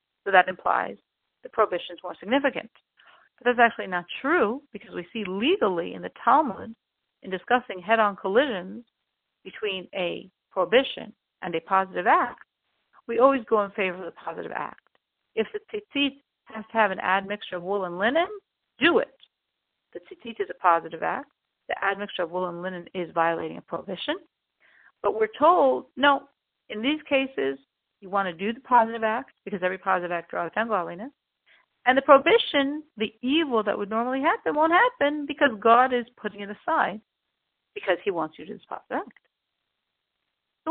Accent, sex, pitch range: American, female, 195-280 Hz